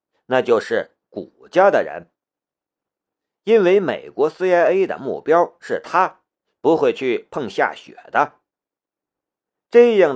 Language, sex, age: Chinese, male, 50-69